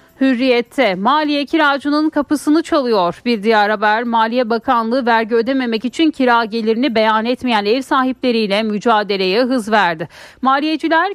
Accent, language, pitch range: native, Turkish, 215-280 Hz